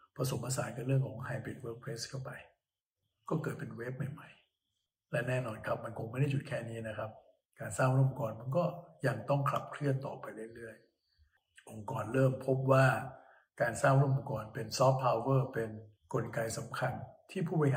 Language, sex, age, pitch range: Thai, male, 60-79, 110-135 Hz